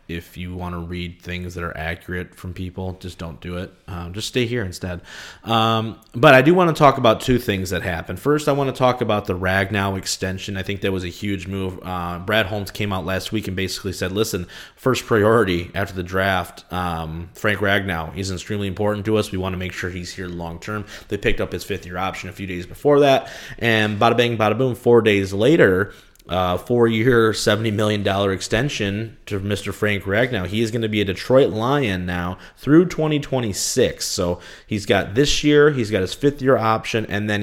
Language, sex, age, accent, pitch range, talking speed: English, male, 20-39, American, 95-110 Hz, 215 wpm